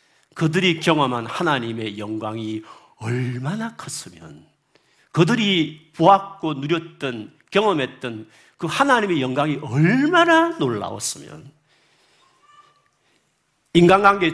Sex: male